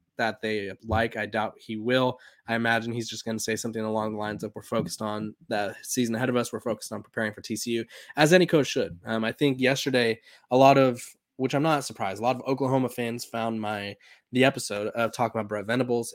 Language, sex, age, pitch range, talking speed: English, male, 20-39, 110-130 Hz, 230 wpm